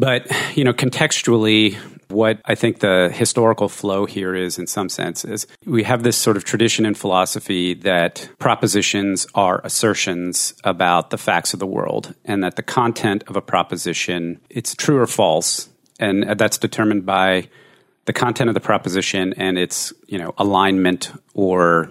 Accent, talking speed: American, 165 wpm